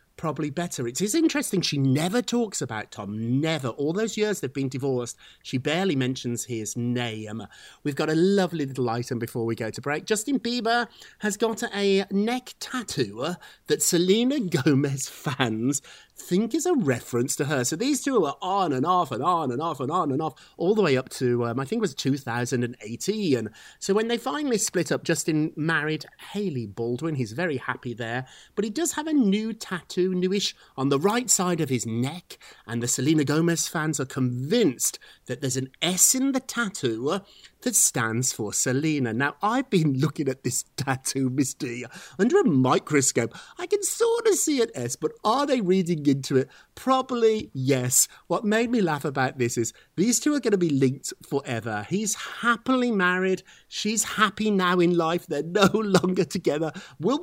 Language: English